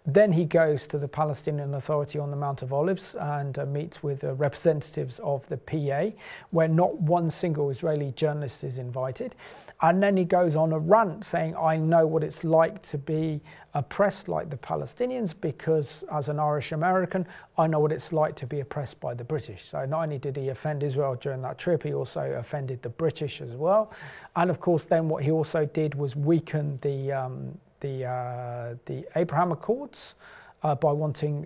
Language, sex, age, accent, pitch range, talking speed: English, male, 40-59, British, 140-165 Hz, 190 wpm